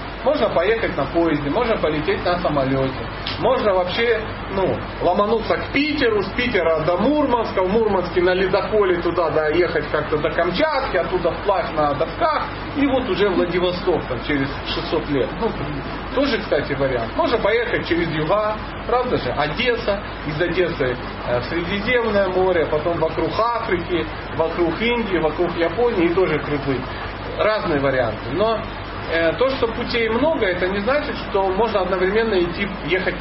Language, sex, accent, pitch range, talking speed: Russian, male, native, 155-220 Hz, 145 wpm